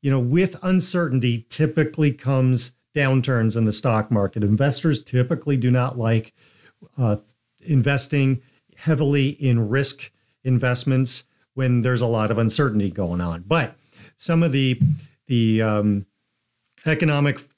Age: 50-69